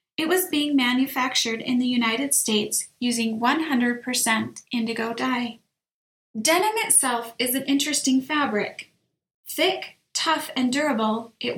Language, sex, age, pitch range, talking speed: English, female, 30-49, 230-305 Hz, 120 wpm